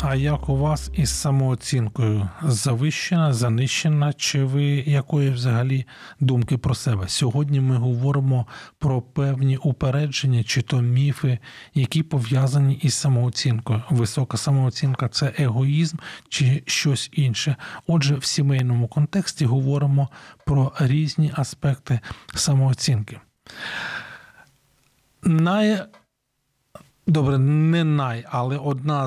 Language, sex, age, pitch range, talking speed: Ukrainian, male, 40-59, 130-155 Hz, 105 wpm